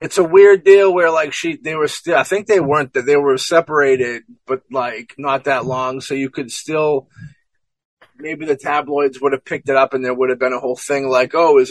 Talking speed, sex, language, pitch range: 235 wpm, male, English, 130-150 Hz